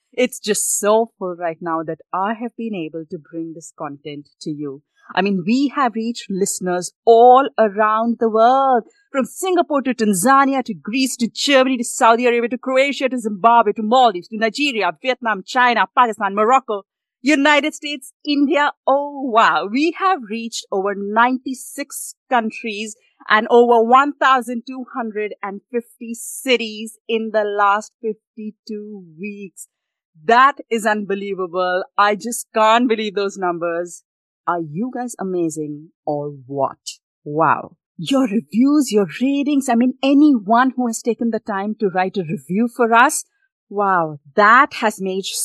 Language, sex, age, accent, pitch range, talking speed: English, female, 30-49, Indian, 195-260 Hz, 145 wpm